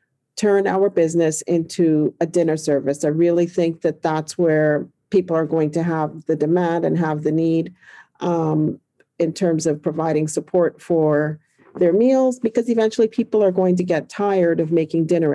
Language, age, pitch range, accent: English, 50-69, 160-195 Hz, American